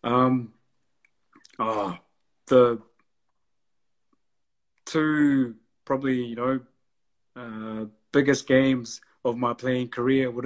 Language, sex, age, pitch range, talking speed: English, male, 20-39, 115-130 Hz, 90 wpm